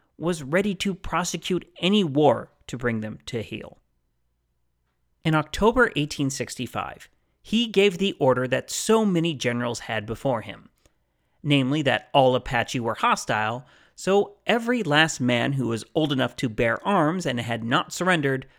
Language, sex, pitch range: English, male, 115-160 Hz